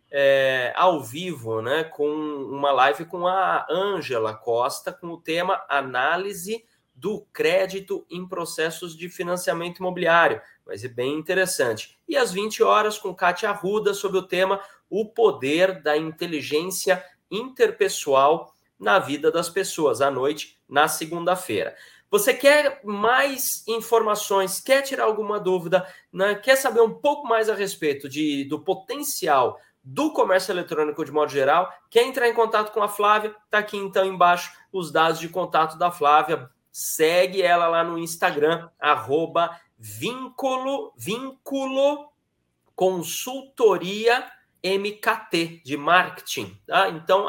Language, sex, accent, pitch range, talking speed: Portuguese, male, Brazilian, 165-220 Hz, 130 wpm